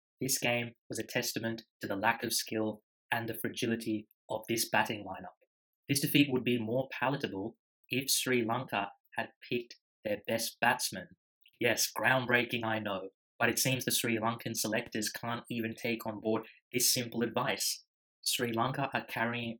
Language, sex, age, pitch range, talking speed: English, male, 20-39, 110-125 Hz, 165 wpm